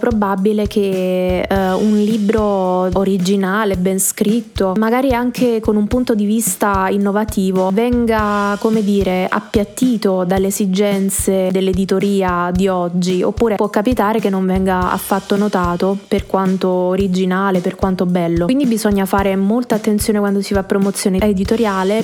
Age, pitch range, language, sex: 20-39, 195-220 Hz, Italian, female